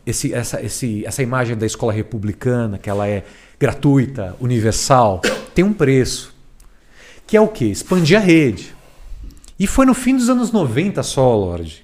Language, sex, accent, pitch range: Portuguese, male, Brazilian, 105-160 Hz